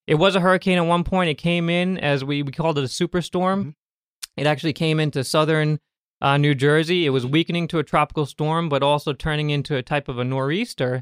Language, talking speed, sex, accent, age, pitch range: English, 225 wpm, male, American, 20-39, 130-155 Hz